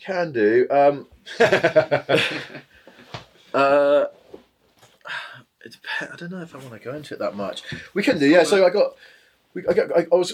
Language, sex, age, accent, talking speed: English, male, 20-39, British, 175 wpm